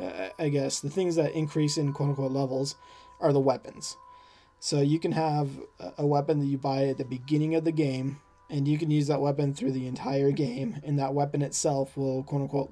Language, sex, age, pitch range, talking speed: English, male, 20-39, 135-150 Hz, 205 wpm